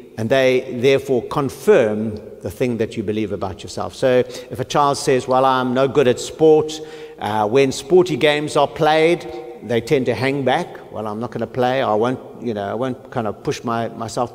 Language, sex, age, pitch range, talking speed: English, male, 60-79, 115-150 Hz, 210 wpm